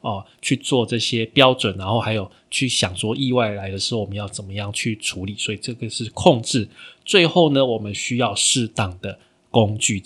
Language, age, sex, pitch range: Chinese, 20-39, male, 105-135 Hz